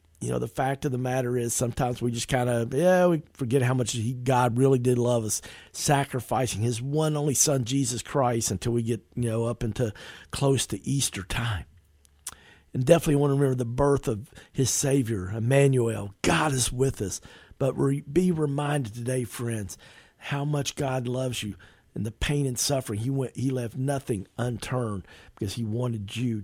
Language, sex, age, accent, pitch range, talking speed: English, male, 50-69, American, 110-140 Hz, 185 wpm